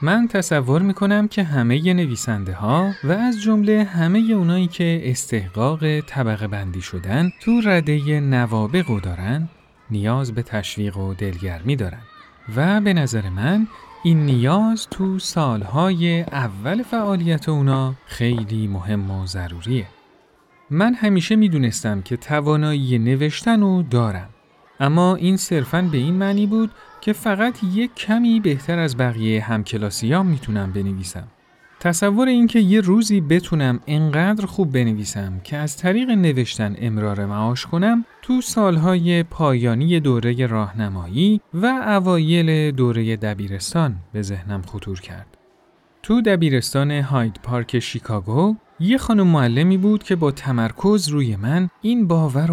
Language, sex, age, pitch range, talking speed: Persian, male, 40-59, 115-190 Hz, 130 wpm